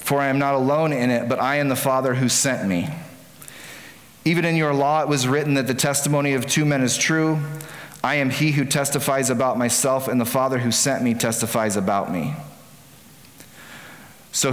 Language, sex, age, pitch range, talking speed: English, male, 30-49, 120-140 Hz, 195 wpm